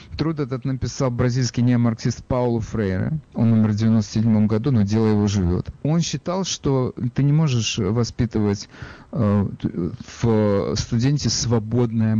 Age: 40-59